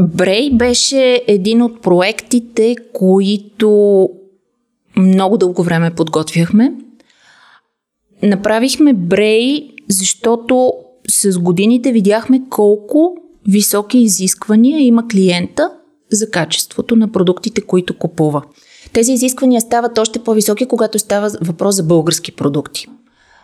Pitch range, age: 185-240 Hz, 30-49